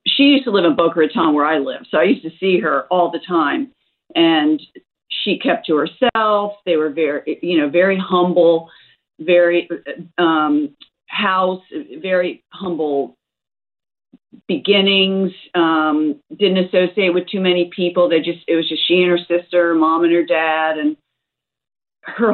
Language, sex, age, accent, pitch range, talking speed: English, female, 50-69, American, 165-220 Hz, 160 wpm